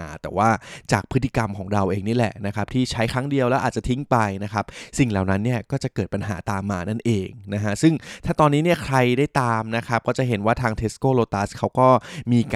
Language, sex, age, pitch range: Thai, male, 20-39, 105-130 Hz